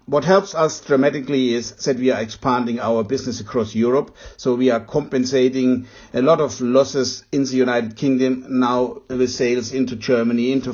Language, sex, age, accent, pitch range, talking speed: English, male, 60-79, German, 120-140 Hz, 175 wpm